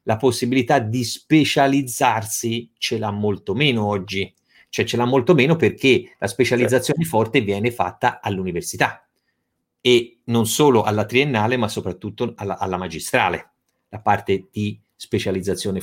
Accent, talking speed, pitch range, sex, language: native, 130 wpm, 110-130 Hz, male, Italian